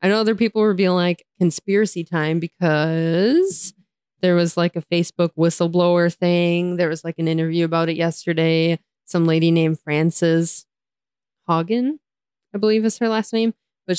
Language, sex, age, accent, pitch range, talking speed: English, female, 20-39, American, 165-185 Hz, 160 wpm